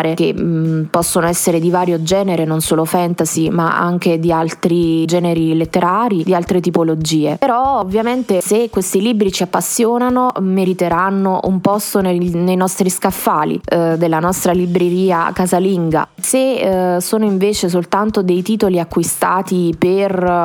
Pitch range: 175-200 Hz